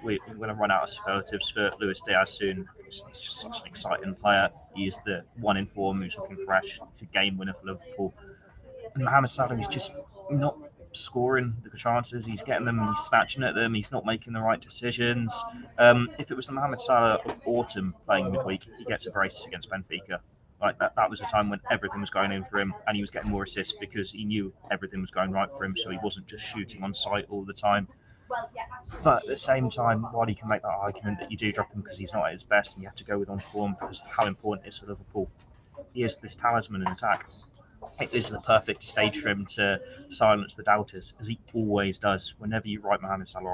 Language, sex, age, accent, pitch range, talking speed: English, male, 20-39, British, 95-115 Hz, 240 wpm